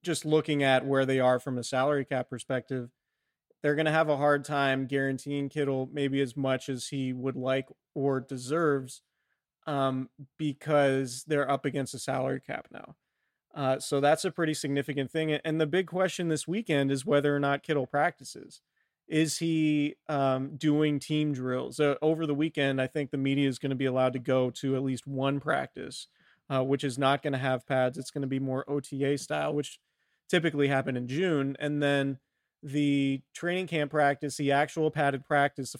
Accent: American